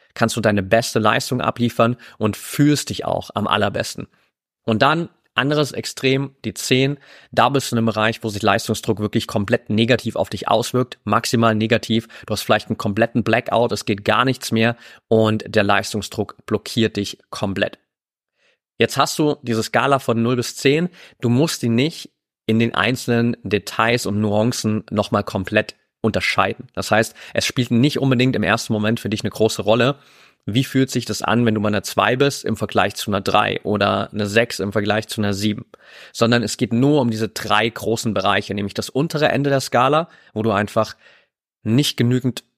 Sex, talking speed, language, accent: male, 185 wpm, German, German